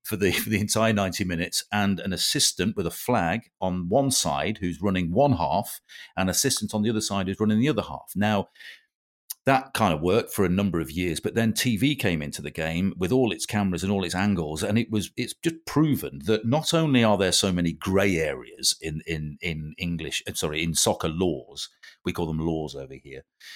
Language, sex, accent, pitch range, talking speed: English, male, British, 90-115 Hz, 220 wpm